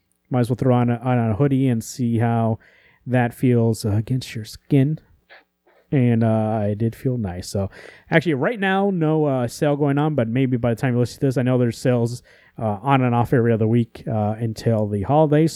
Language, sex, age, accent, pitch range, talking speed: English, male, 30-49, American, 105-135 Hz, 220 wpm